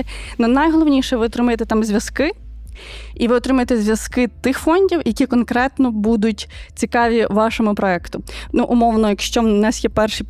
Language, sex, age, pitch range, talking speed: Ukrainian, female, 20-39, 215-255 Hz, 150 wpm